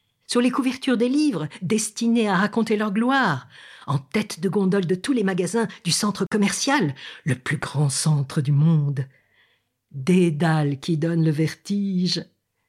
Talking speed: 155 wpm